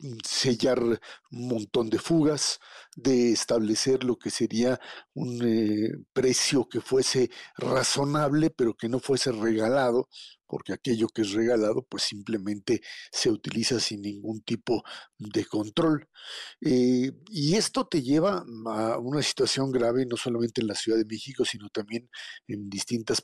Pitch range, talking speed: 110-150 Hz, 140 wpm